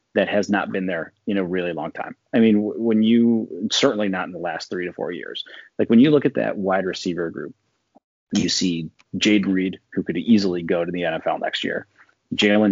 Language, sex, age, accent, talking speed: English, male, 30-49, American, 215 wpm